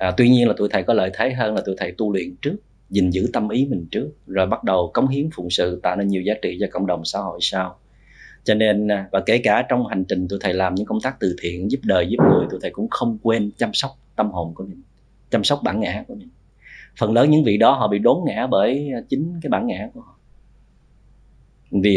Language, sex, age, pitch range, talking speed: Vietnamese, male, 30-49, 95-130 Hz, 255 wpm